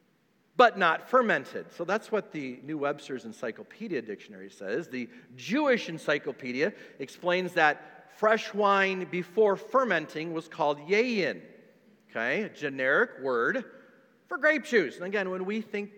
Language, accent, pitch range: English, American, 125-200 Hz